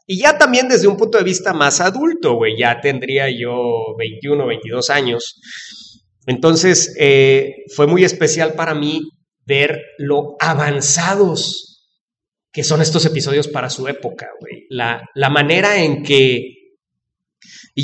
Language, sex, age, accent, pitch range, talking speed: English, male, 30-49, Mexican, 135-195 Hz, 140 wpm